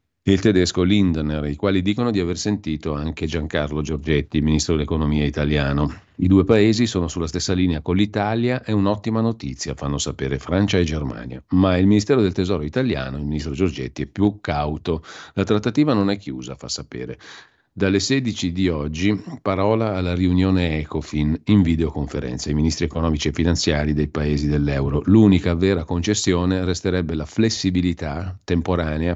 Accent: native